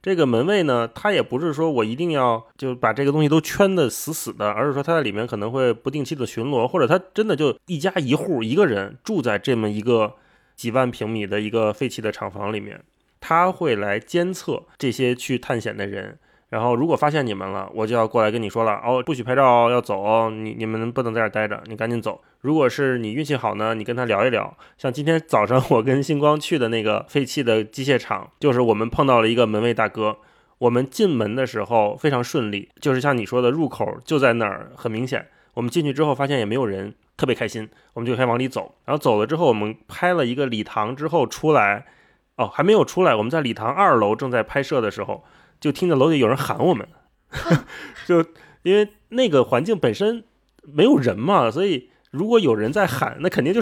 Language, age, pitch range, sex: Chinese, 20-39, 110-145 Hz, male